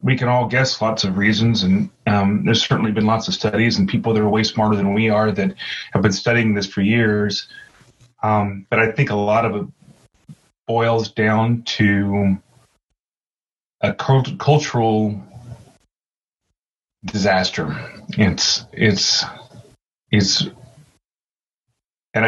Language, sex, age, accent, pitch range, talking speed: English, male, 30-49, American, 105-120 Hz, 130 wpm